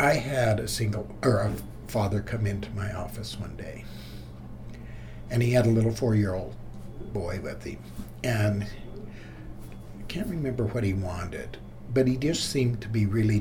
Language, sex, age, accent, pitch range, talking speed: English, male, 60-79, American, 105-120 Hz, 160 wpm